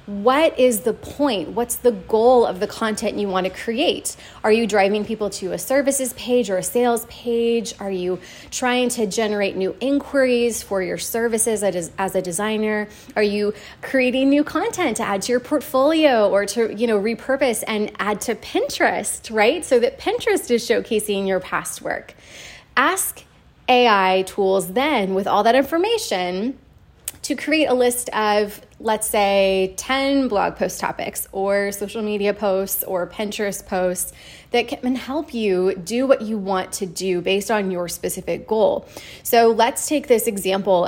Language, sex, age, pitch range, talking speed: English, female, 20-39, 195-250 Hz, 165 wpm